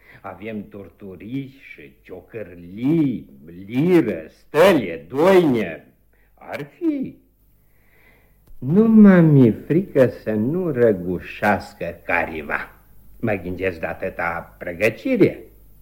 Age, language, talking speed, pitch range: 60-79, Romanian, 80 wpm, 100-135 Hz